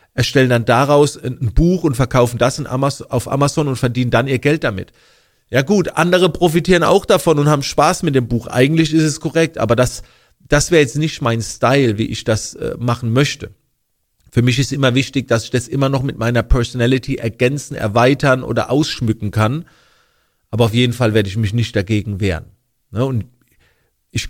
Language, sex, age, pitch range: German, male, 40-59, 115-145 Hz